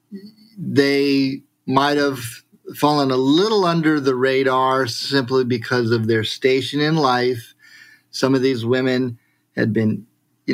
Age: 30-49